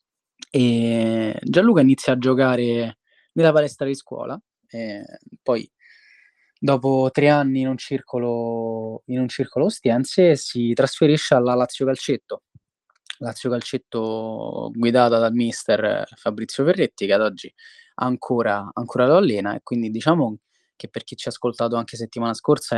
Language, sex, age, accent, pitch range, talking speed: Italian, male, 20-39, native, 115-145 Hz, 130 wpm